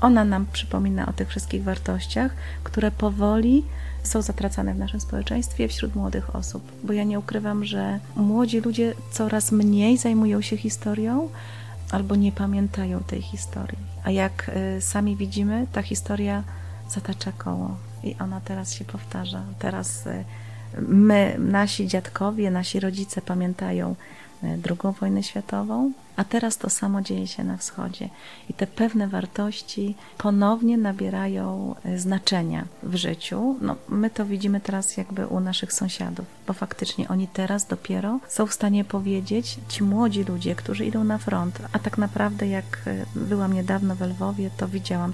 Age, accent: 30-49, native